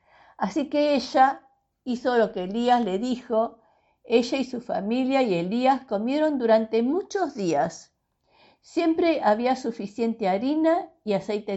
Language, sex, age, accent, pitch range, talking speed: Spanish, female, 50-69, American, 205-285 Hz, 130 wpm